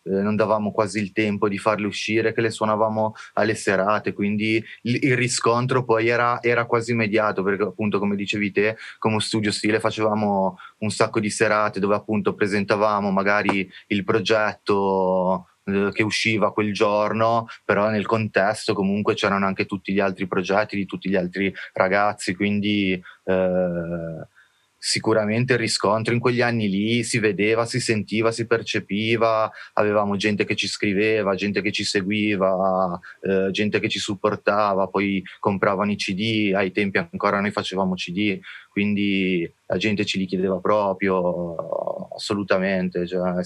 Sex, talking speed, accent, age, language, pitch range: male, 150 wpm, native, 20-39, Italian, 100-110 Hz